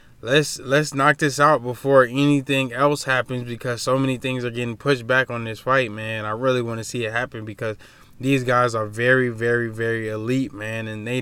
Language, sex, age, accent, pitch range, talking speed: English, male, 20-39, American, 120-140 Hz, 210 wpm